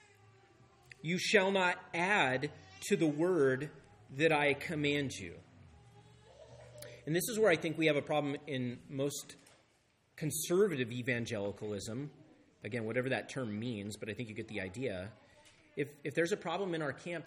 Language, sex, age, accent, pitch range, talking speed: English, male, 30-49, American, 125-170 Hz, 155 wpm